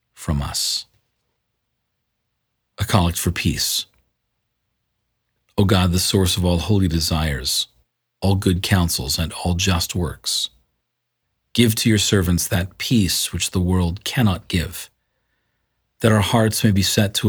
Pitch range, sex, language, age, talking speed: 85-105 Hz, male, English, 40-59, 135 wpm